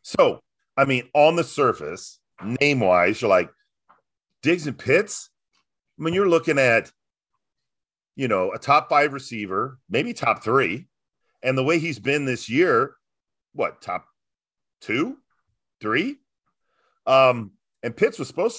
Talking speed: 135 wpm